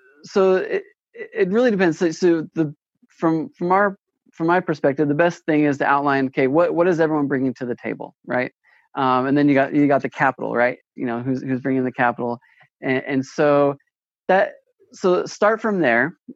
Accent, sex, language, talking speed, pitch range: American, male, English, 200 wpm, 130-165 Hz